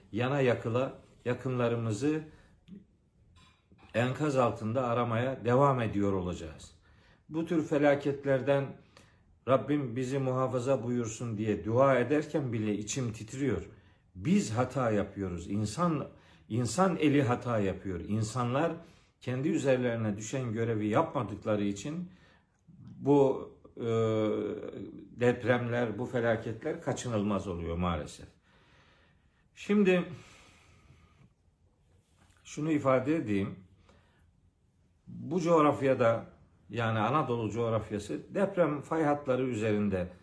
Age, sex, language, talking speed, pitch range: 50-69, male, Turkish, 85 wpm, 100-135 Hz